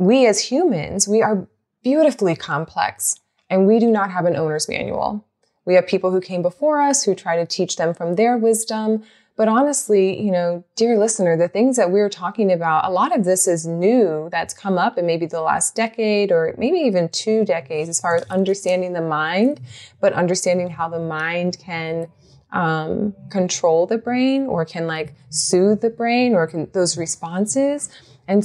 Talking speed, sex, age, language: 190 wpm, female, 20-39, English